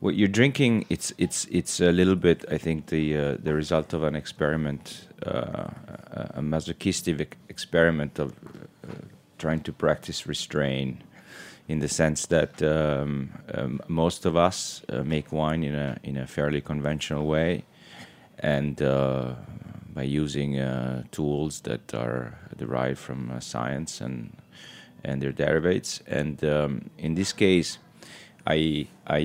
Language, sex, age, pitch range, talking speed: English, male, 30-49, 70-80 Hz, 140 wpm